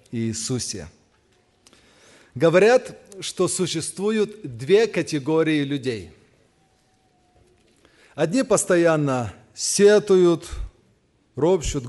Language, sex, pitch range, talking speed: Russian, male, 125-180 Hz, 55 wpm